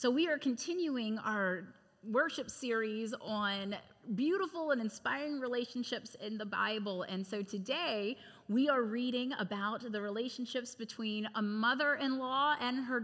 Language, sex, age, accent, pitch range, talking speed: English, female, 30-49, American, 215-260 Hz, 135 wpm